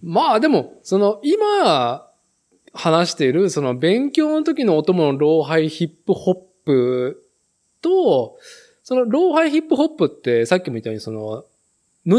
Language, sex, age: Japanese, male, 20-39